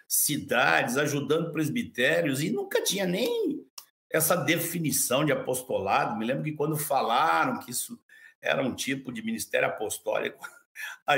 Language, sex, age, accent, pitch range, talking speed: Portuguese, male, 60-79, Brazilian, 135-185 Hz, 135 wpm